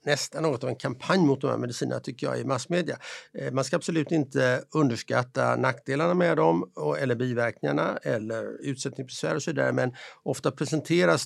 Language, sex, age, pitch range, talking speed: Swedish, male, 60-79, 120-155 Hz, 165 wpm